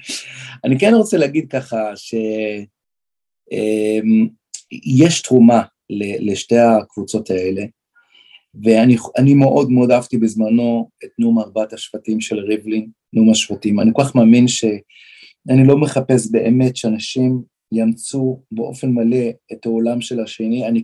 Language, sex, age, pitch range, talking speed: Hebrew, male, 40-59, 115-130 Hz, 115 wpm